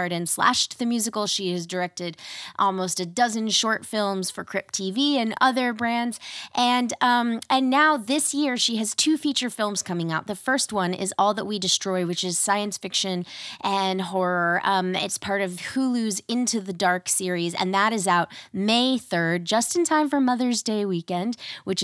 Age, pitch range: 20-39, 180-255 Hz